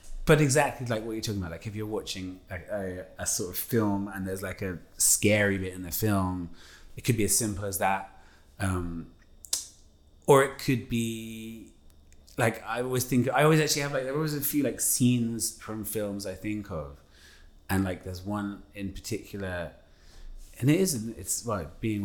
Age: 30-49